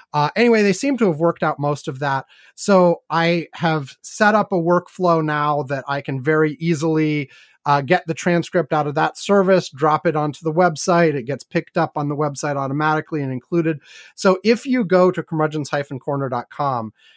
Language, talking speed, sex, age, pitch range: English, 185 wpm, male, 30-49, 145-175 Hz